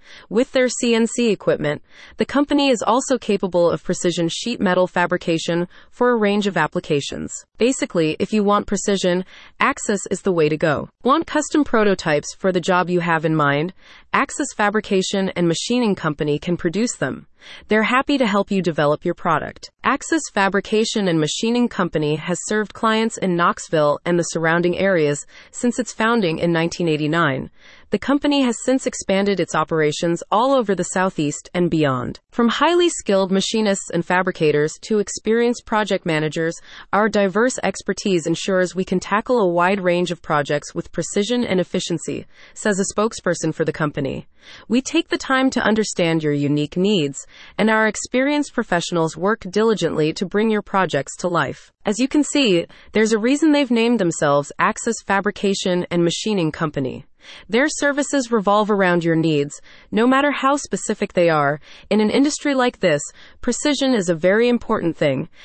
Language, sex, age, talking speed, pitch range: English, female, 30-49, 165 wpm, 170-230 Hz